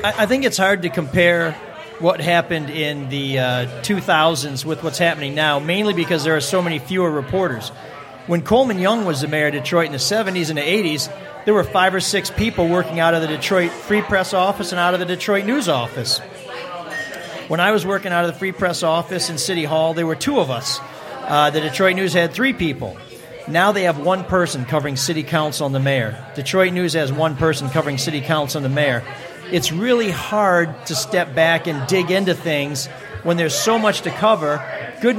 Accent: American